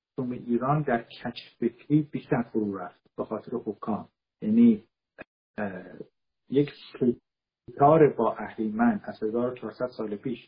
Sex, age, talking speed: male, 50-69, 115 wpm